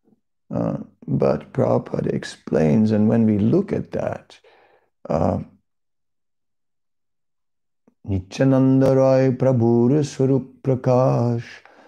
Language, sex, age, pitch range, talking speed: English, male, 50-69, 110-170 Hz, 75 wpm